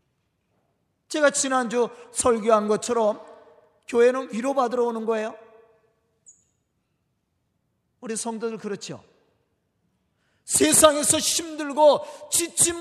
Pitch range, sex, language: 255-315 Hz, male, Korean